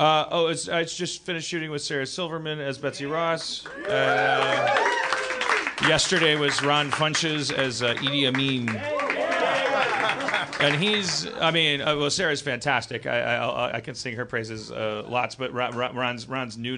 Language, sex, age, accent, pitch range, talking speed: English, male, 40-59, American, 115-155 Hz, 155 wpm